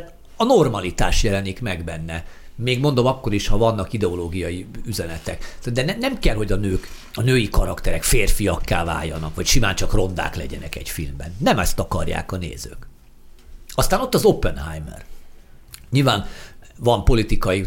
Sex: male